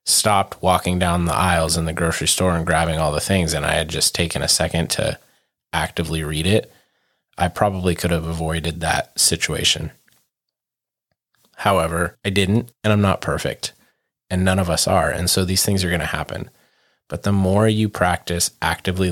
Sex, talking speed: male, 180 wpm